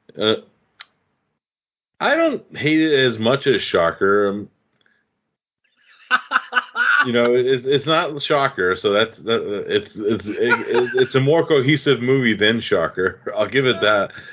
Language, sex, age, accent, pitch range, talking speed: English, male, 30-49, American, 95-140 Hz, 135 wpm